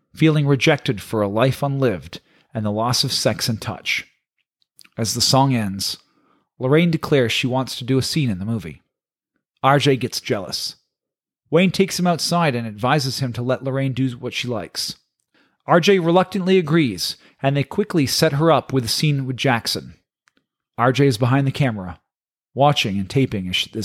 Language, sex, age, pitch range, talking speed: English, male, 40-59, 115-150 Hz, 175 wpm